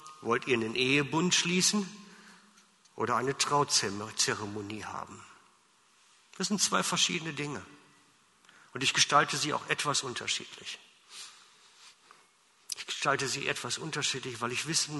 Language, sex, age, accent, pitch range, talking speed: German, male, 50-69, German, 125-175 Hz, 115 wpm